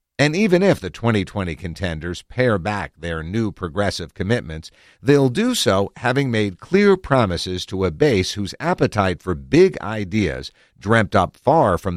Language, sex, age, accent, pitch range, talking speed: English, male, 50-69, American, 90-125 Hz, 155 wpm